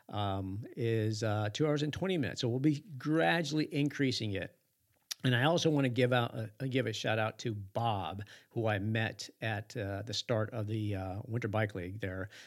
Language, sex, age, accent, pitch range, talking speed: English, male, 50-69, American, 105-130 Hz, 205 wpm